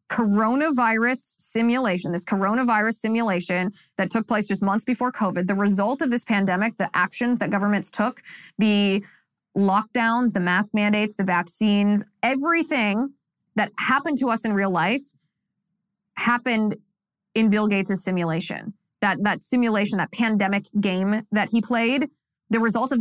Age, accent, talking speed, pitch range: 20-39, American, 140 wpm, 190-230 Hz